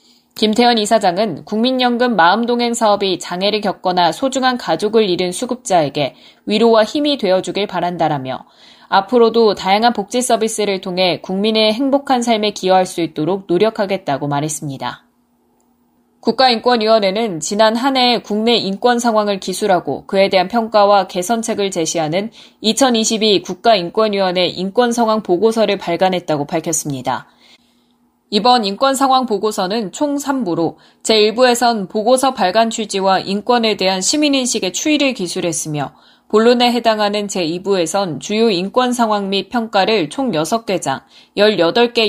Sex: female